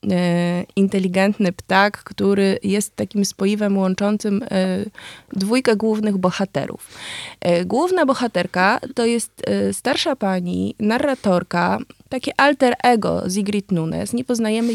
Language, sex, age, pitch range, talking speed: Polish, female, 20-39, 185-220 Hz, 100 wpm